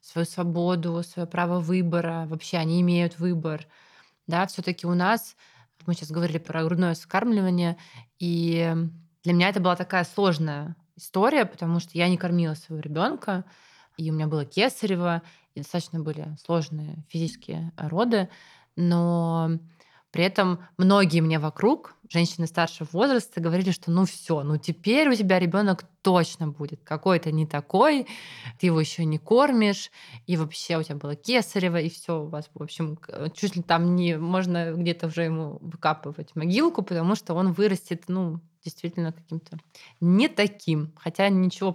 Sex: female